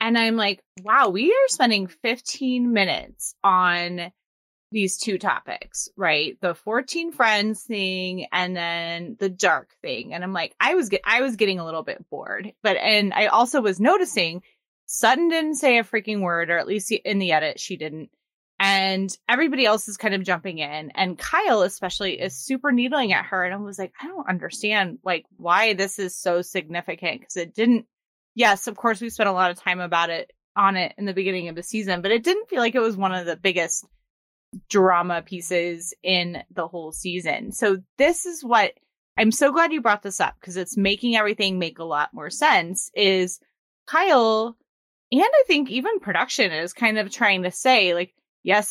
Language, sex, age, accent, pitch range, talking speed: English, female, 20-39, American, 180-230 Hz, 195 wpm